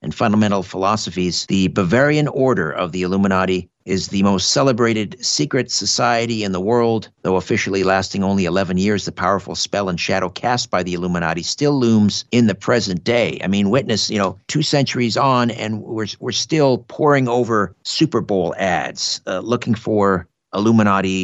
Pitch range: 90-120 Hz